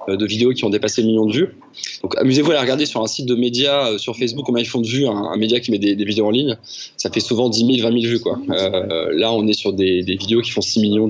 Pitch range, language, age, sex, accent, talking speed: 105-130 Hz, French, 20-39, male, French, 310 wpm